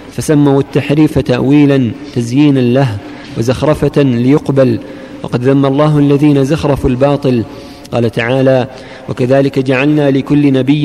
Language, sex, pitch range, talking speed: Arabic, male, 130-145 Hz, 100 wpm